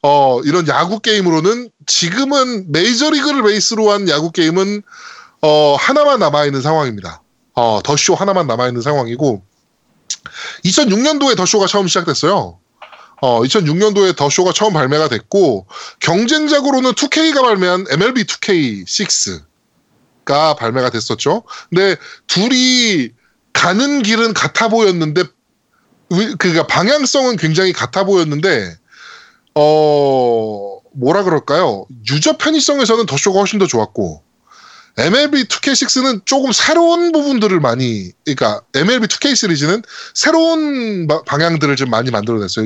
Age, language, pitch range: 20-39, Korean, 145-240 Hz